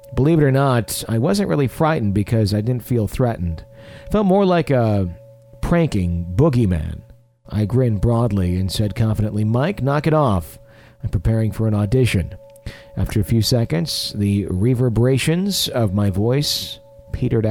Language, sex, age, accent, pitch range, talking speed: English, male, 40-59, American, 100-125 Hz, 155 wpm